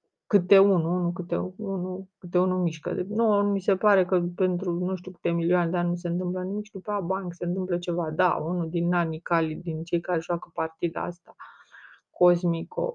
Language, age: Romanian, 30-49